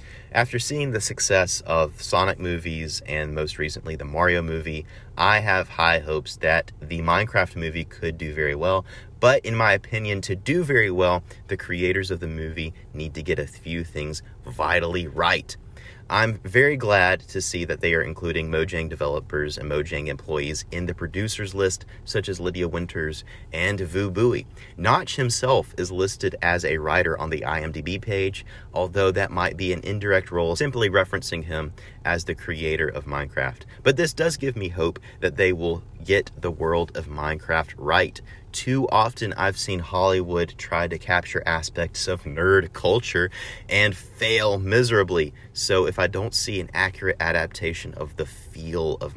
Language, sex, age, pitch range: English, male, 30-49, 80-100 Hz